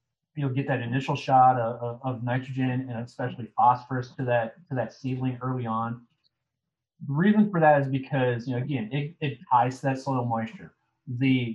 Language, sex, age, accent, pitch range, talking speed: English, male, 30-49, American, 120-140 Hz, 185 wpm